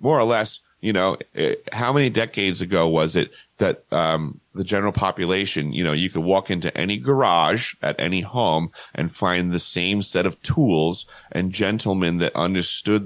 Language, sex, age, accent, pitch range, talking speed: English, male, 40-59, American, 80-100 Hz, 180 wpm